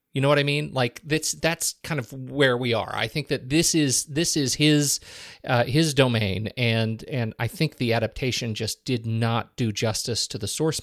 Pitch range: 110-140 Hz